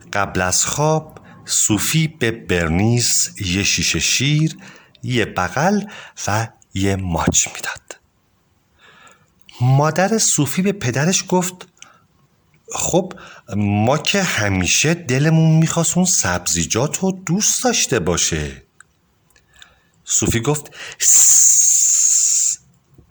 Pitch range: 105-165 Hz